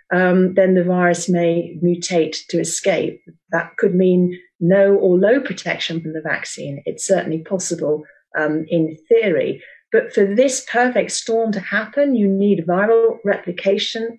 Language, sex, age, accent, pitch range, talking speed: English, female, 40-59, British, 170-210 Hz, 150 wpm